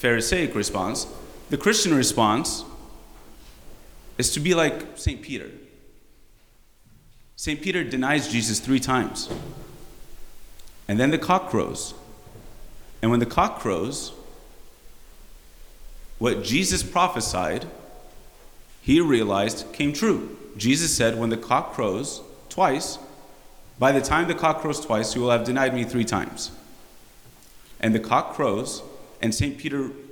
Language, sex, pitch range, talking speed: English, male, 110-140 Hz, 125 wpm